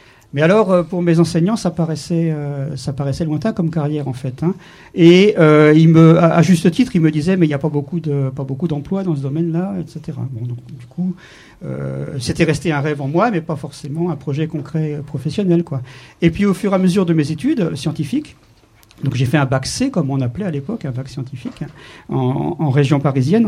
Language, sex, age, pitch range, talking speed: French, male, 50-69, 140-175 Hz, 230 wpm